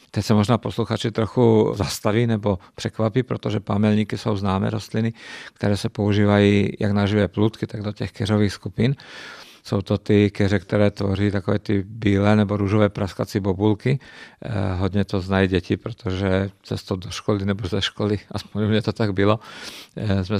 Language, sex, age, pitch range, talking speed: Czech, male, 50-69, 100-110 Hz, 160 wpm